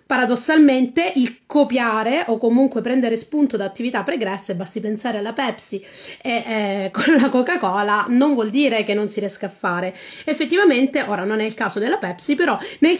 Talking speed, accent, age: 180 wpm, native, 30-49